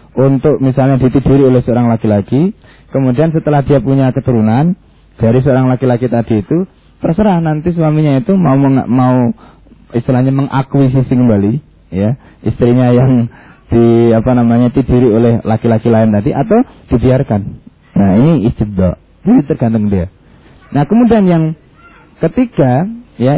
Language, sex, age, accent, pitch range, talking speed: Indonesian, male, 20-39, native, 110-160 Hz, 130 wpm